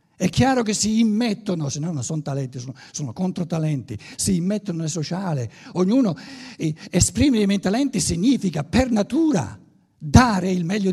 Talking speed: 165 wpm